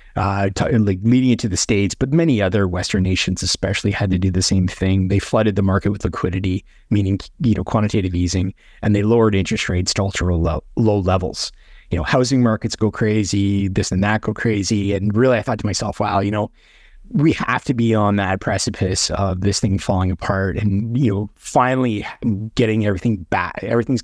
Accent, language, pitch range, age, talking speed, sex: American, English, 95-120 Hz, 30-49, 195 wpm, male